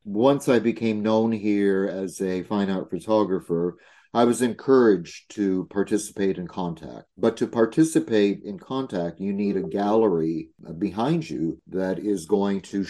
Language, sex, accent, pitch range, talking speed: English, male, American, 95-115 Hz, 150 wpm